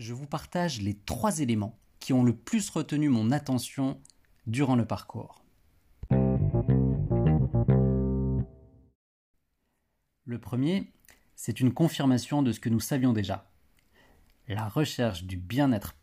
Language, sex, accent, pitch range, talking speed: French, male, French, 105-145 Hz, 115 wpm